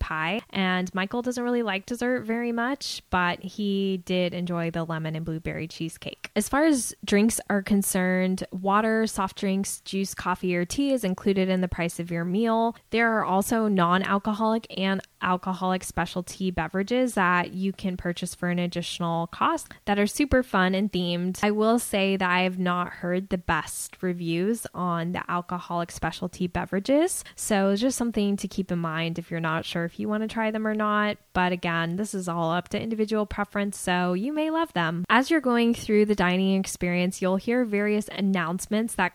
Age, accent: 10-29, American